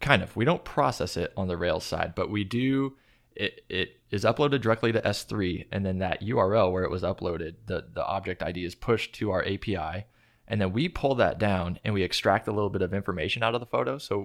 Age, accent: 20-39, American